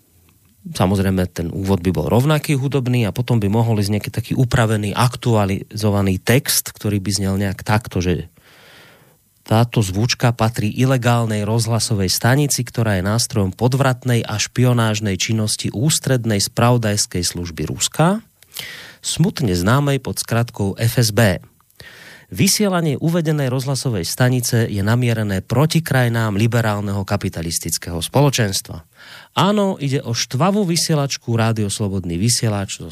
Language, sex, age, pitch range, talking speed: Slovak, male, 30-49, 100-135 Hz, 120 wpm